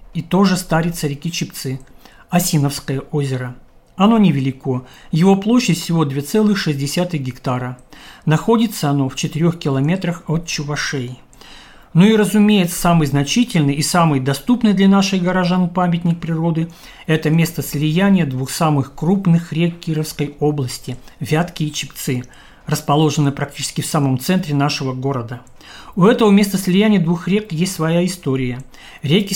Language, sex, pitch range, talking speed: Russian, male, 140-175 Hz, 130 wpm